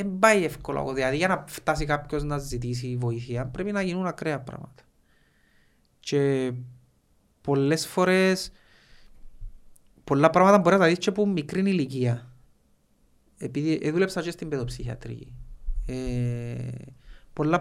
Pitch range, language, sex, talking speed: 125-175 Hz, Greek, male, 75 wpm